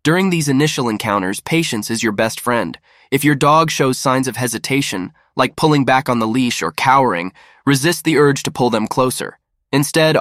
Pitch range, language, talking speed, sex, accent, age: 110-145 Hz, English, 190 wpm, male, American, 20-39